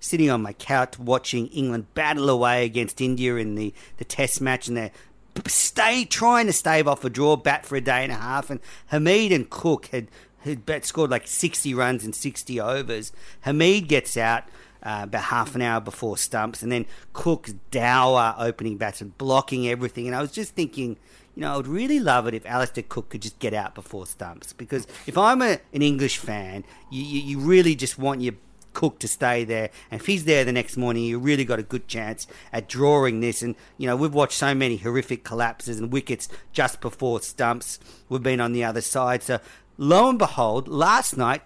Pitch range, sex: 120-150 Hz, male